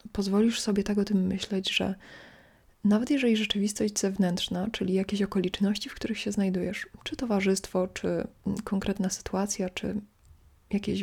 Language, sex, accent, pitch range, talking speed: Polish, female, native, 185-210 Hz, 130 wpm